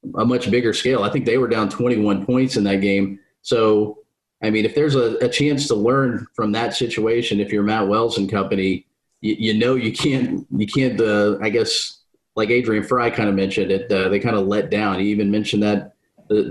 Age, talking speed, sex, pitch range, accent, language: 30-49, 220 wpm, male, 105-125 Hz, American, English